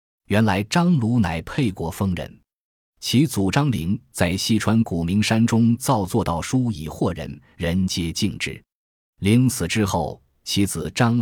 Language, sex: Chinese, male